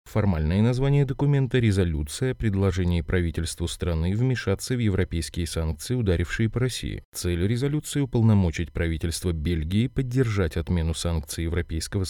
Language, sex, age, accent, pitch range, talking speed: Russian, male, 30-49, native, 85-115 Hz, 125 wpm